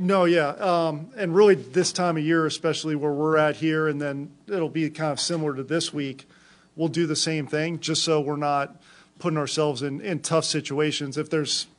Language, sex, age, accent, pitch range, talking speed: English, male, 40-59, American, 140-160 Hz, 210 wpm